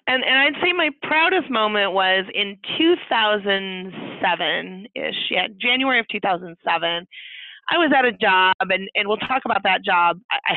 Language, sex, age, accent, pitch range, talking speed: English, female, 30-49, American, 175-225 Hz, 155 wpm